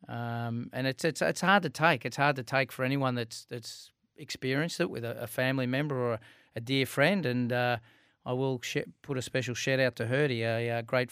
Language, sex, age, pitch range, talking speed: English, male, 30-49, 120-135 Hz, 225 wpm